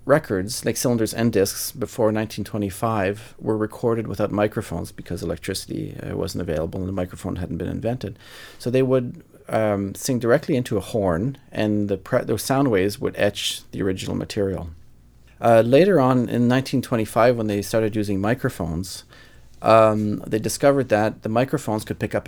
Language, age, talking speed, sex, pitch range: English, 40-59, 160 wpm, male, 95-120 Hz